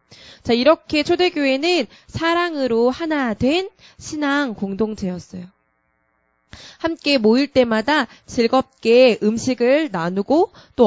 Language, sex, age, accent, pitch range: Korean, female, 20-39, native, 215-290 Hz